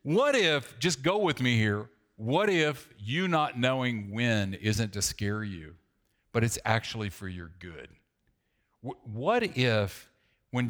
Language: English